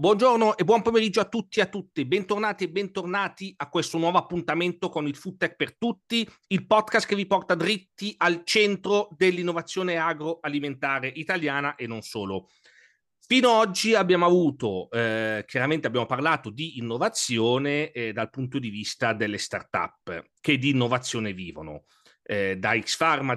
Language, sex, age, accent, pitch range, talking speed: Italian, male, 40-59, native, 125-175 Hz, 155 wpm